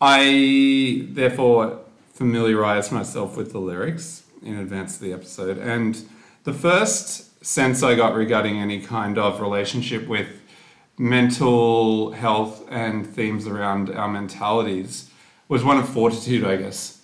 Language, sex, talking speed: English, male, 130 wpm